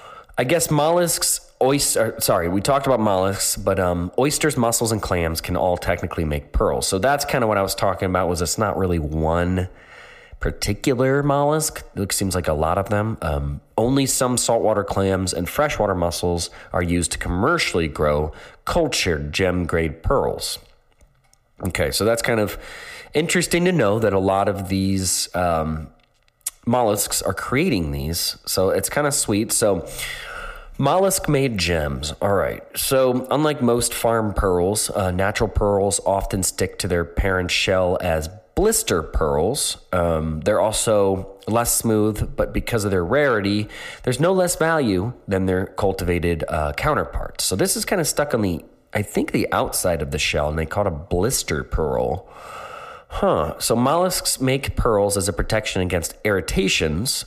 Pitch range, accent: 90-125 Hz, American